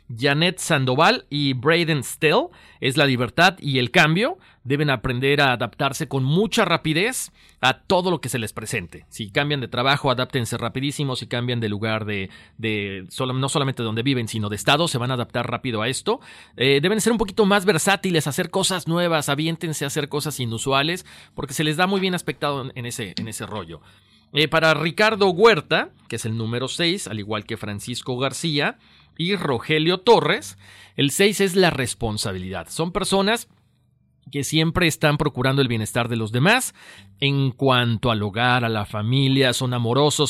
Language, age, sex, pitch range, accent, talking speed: Spanish, 40-59, male, 120-165 Hz, Mexican, 180 wpm